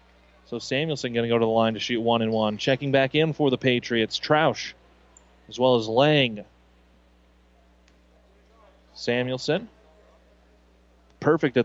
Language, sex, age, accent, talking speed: English, male, 30-49, American, 135 wpm